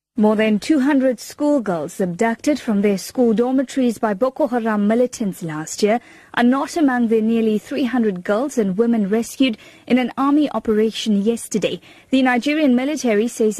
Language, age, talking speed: English, 30-49, 150 wpm